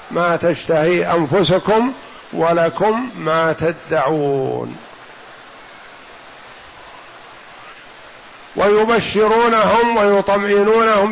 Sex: male